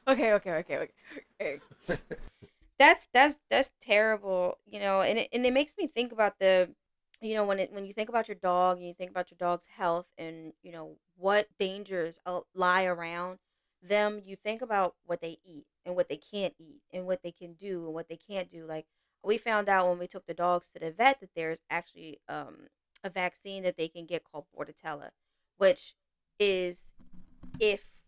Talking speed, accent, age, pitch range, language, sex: 200 wpm, American, 20-39, 170-210 Hz, English, female